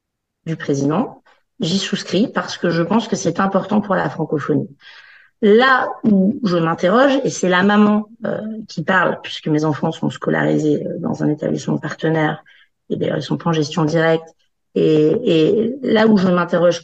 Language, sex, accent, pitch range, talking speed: French, female, French, 170-225 Hz, 170 wpm